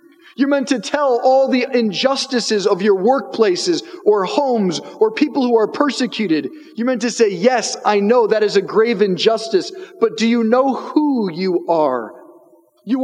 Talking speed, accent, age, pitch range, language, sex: 170 wpm, American, 40-59, 175-275 Hz, English, male